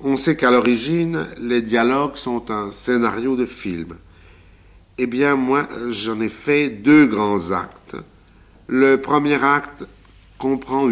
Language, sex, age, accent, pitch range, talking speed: French, male, 50-69, French, 95-125 Hz, 130 wpm